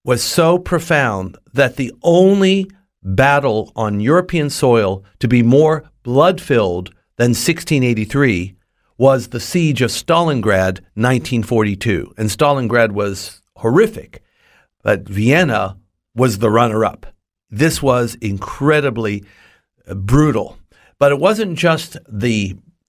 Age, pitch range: 50-69, 115-155 Hz